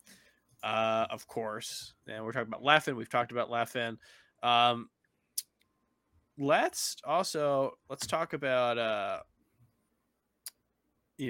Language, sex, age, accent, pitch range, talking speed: English, male, 20-39, American, 120-155 Hz, 105 wpm